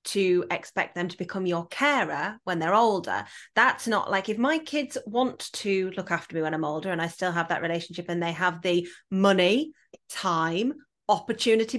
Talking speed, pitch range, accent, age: 190 wpm, 175-255 Hz, British, 30-49